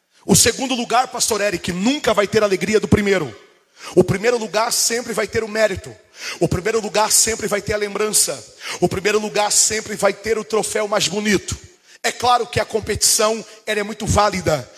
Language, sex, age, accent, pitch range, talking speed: Portuguese, male, 40-59, Brazilian, 200-230 Hz, 185 wpm